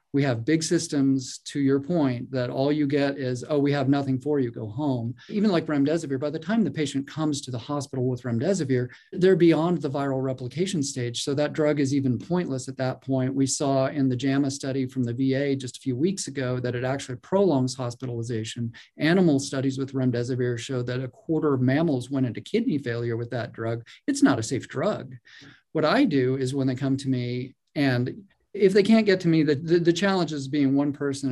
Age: 40-59